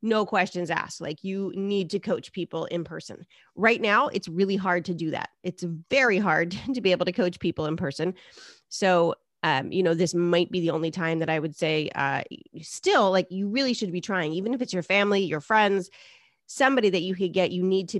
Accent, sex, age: American, female, 30-49